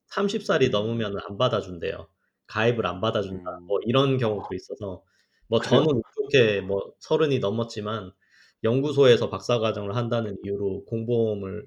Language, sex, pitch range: Korean, male, 105-135 Hz